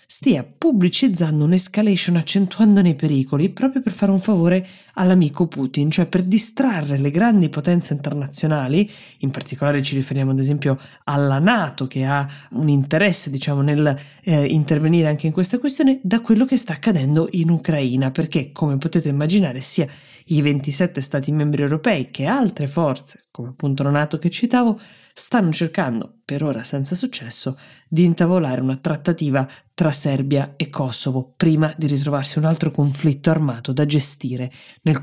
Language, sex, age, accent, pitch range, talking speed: Italian, female, 20-39, native, 140-175 Hz, 150 wpm